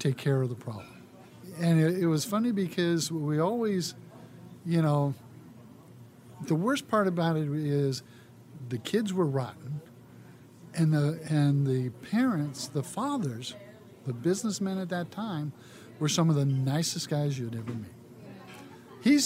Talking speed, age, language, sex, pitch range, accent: 145 wpm, 50-69, English, male, 130-165 Hz, American